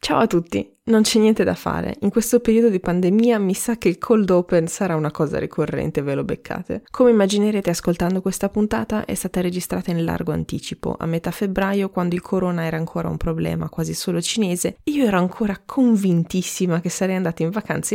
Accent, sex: native, female